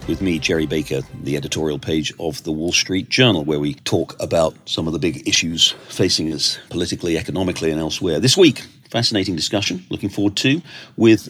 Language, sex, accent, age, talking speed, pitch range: English, male, British, 40-59, 185 wpm, 85-110 Hz